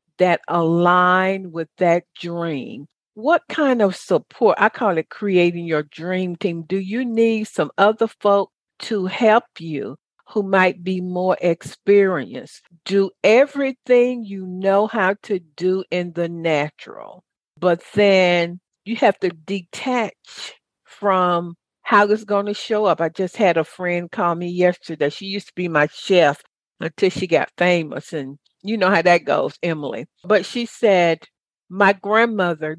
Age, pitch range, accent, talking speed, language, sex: 50-69, 170-205 Hz, American, 150 wpm, English, female